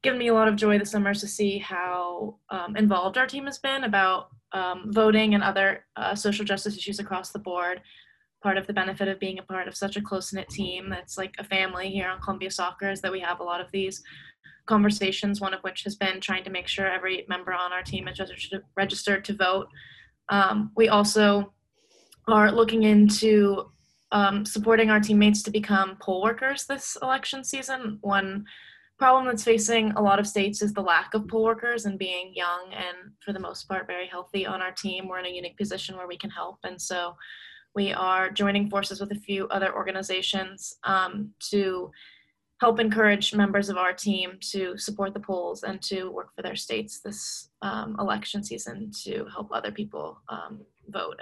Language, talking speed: English, 200 wpm